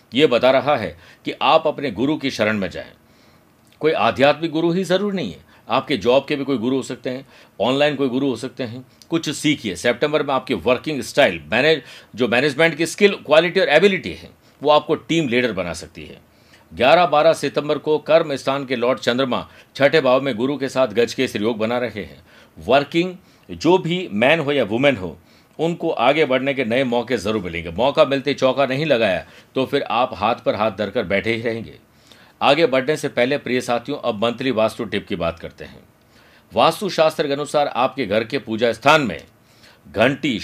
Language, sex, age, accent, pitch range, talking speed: Hindi, male, 50-69, native, 125-155 Hz, 195 wpm